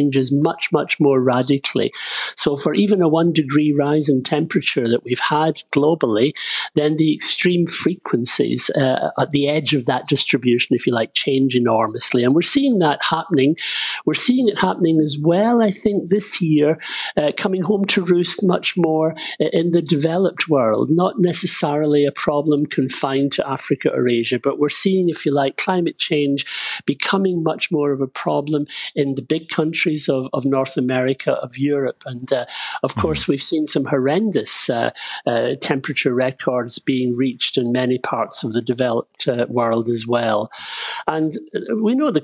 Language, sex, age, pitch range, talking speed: English, male, 50-69, 130-165 Hz, 170 wpm